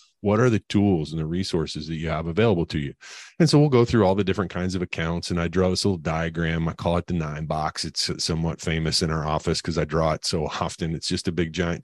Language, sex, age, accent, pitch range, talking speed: English, male, 30-49, American, 80-95 Hz, 270 wpm